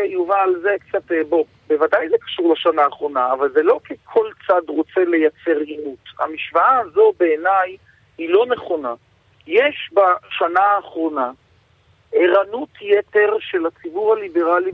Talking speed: 130 wpm